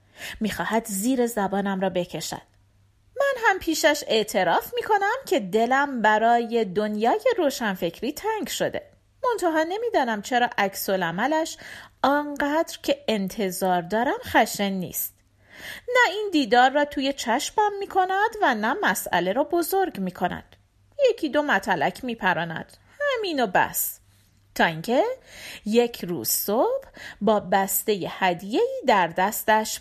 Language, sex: Persian, female